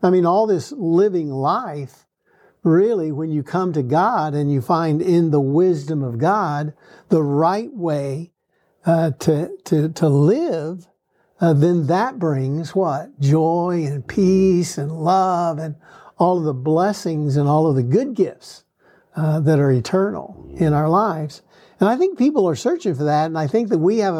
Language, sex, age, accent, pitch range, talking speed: English, male, 60-79, American, 150-185 Hz, 175 wpm